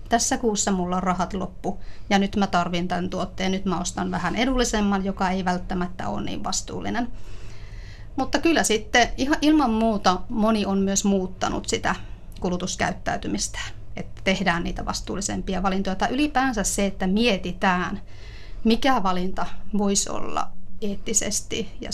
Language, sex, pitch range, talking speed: Finnish, female, 180-220 Hz, 140 wpm